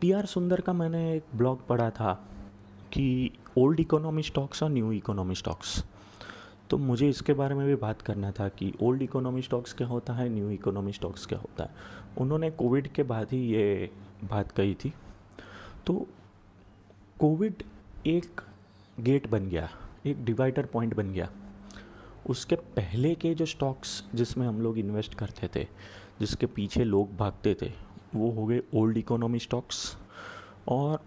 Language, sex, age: Hindi, male, 30-49